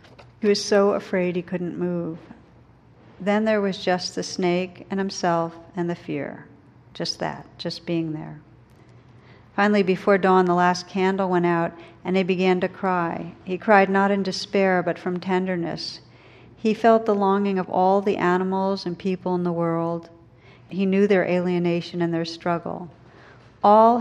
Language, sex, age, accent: English, female, 50-69, American